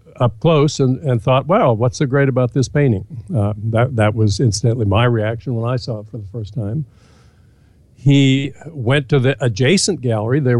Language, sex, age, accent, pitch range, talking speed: English, male, 60-79, American, 110-140 Hz, 200 wpm